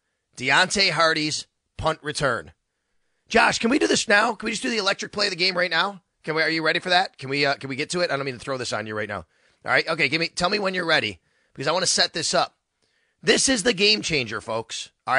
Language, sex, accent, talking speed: English, male, American, 280 wpm